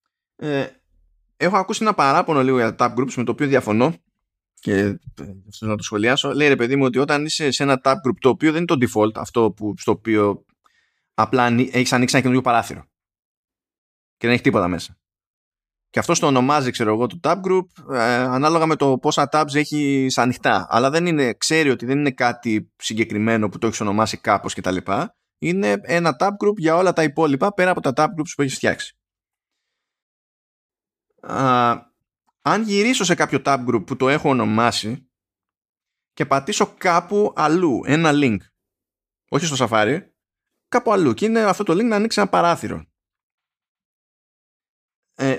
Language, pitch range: Greek, 110-155 Hz